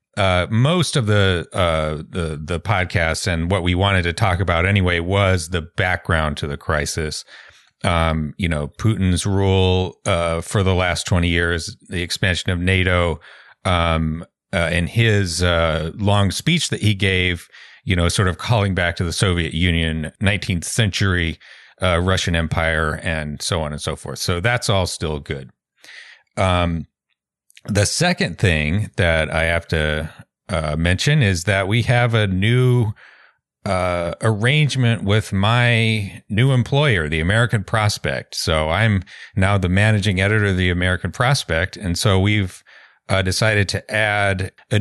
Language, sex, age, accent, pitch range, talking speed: English, male, 40-59, American, 85-105 Hz, 155 wpm